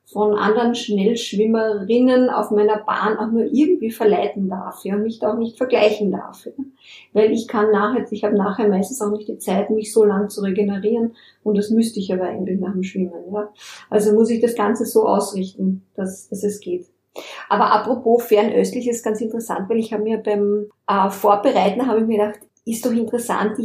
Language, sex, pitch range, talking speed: German, female, 205-230 Hz, 205 wpm